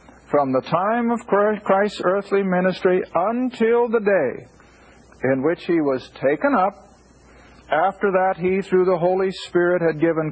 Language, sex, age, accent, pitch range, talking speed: English, male, 60-79, American, 155-220 Hz, 145 wpm